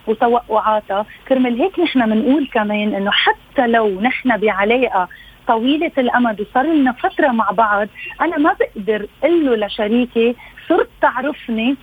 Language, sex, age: Arabic, female, 30-49